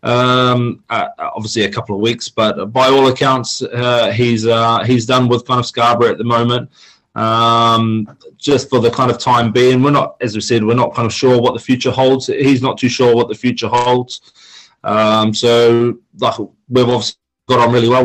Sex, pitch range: male, 110-125 Hz